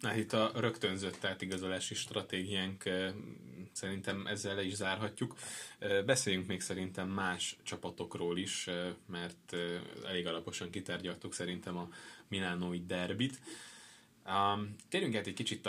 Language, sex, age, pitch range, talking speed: Hungarian, male, 20-39, 90-110 Hz, 105 wpm